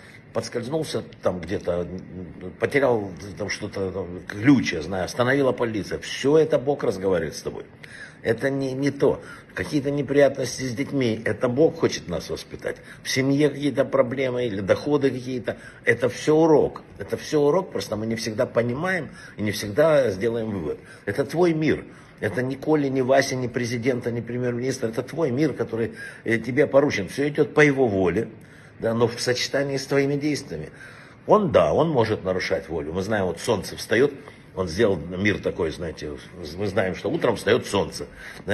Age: 60-79